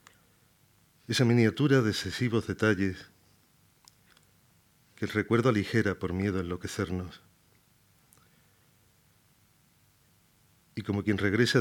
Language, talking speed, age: Spanish, 90 wpm, 40-59